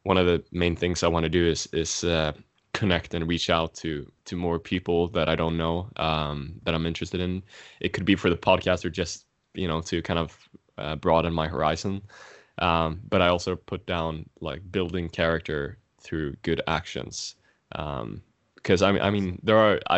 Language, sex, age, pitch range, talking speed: English, male, 20-39, 80-90 Hz, 195 wpm